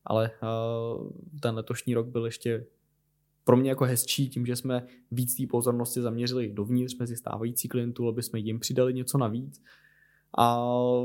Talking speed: 150 wpm